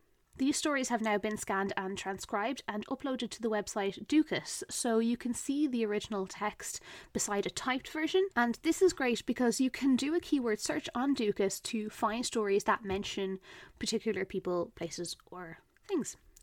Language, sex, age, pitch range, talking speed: English, female, 20-39, 195-265 Hz, 175 wpm